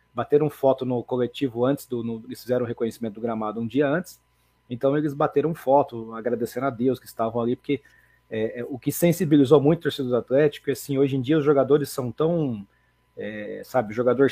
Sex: male